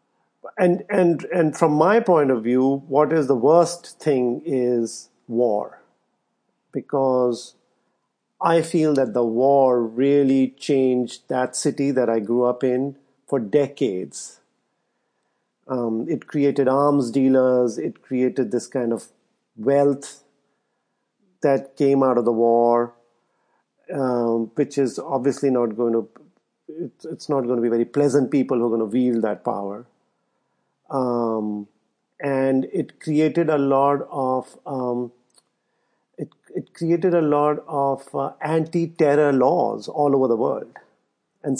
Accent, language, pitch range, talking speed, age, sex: Indian, English, 125-150 Hz, 135 wpm, 50-69, male